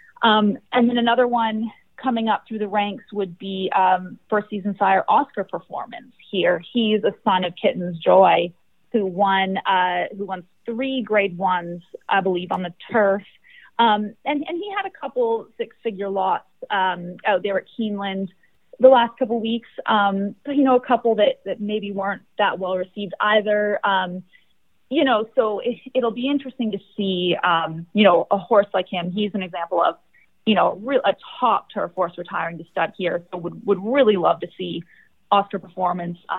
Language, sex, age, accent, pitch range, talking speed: English, female, 30-49, American, 190-235 Hz, 180 wpm